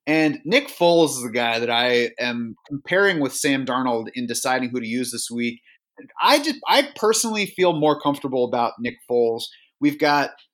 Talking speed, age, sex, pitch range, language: 180 wpm, 30-49, male, 125-155 Hz, English